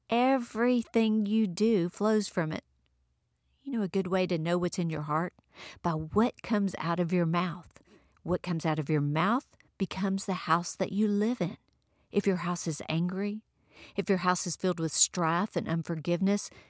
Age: 50-69